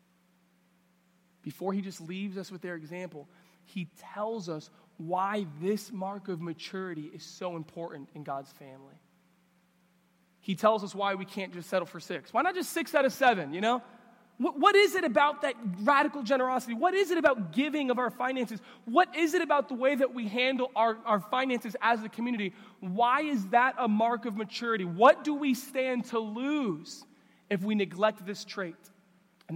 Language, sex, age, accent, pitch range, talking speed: English, male, 20-39, American, 170-220 Hz, 185 wpm